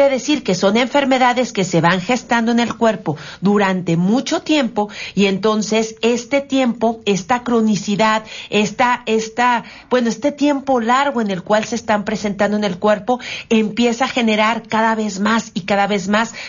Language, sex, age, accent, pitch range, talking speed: Spanish, female, 40-59, Mexican, 195-240 Hz, 165 wpm